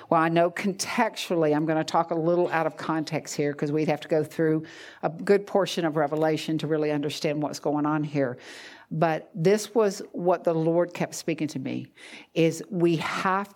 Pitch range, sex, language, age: 155-190 Hz, female, English, 50-69